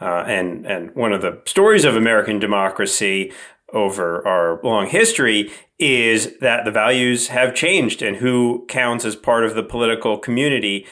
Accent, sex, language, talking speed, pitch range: American, male, English, 160 wpm, 105-145 Hz